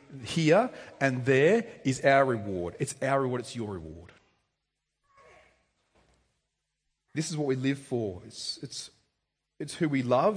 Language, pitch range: English, 120-165 Hz